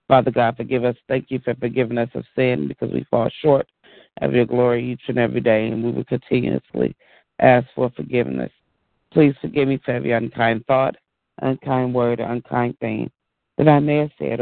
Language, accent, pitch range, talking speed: English, American, 120-135 Hz, 190 wpm